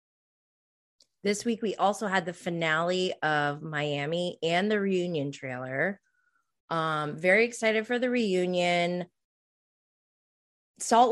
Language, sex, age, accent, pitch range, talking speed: English, female, 20-39, American, 150-205 Hz, 110 wpm